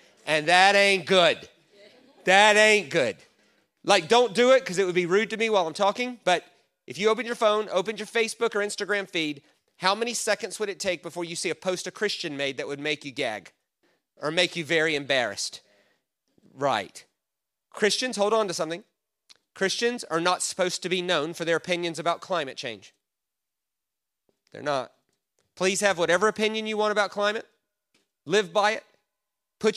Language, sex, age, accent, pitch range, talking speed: English, male, 30-49, American, 180-230 Hz, 180 wpm